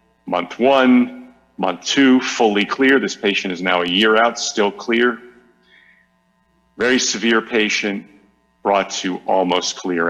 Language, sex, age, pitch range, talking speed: English, male, 40-59, 95-130 Hz, 130 wpm